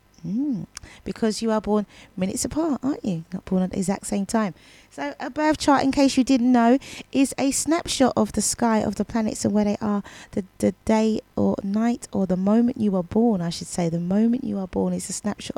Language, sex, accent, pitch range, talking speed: English, female, British, 190-235 Hz, 230 wpm